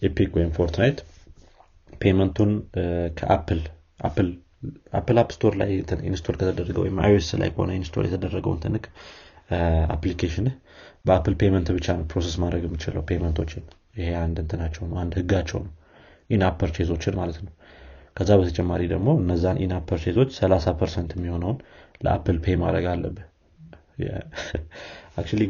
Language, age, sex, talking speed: Amharic, 30-49, male, 120 wpm